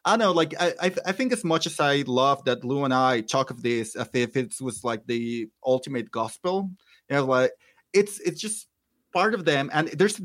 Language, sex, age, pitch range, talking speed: English, male, 30-49, 130-170 Hz, 220 wpm